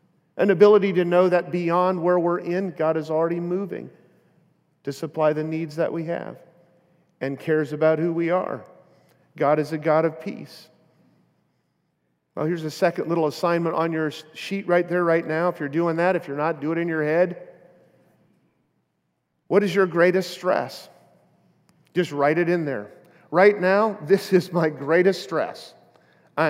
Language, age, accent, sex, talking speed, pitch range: English, 40-59, American, male, 170 wpm, 155-180 Hz